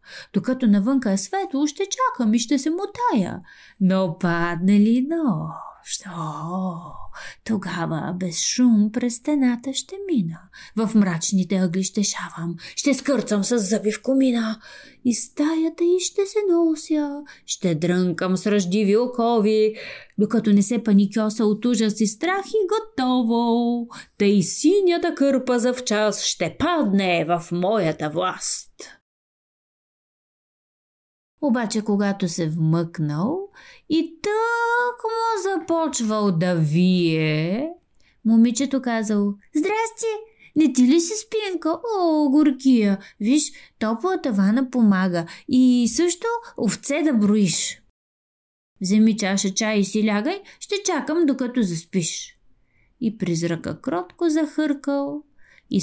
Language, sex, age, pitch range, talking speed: Bulgarian, female, 30-49, 200-310 Hz, 120 wpm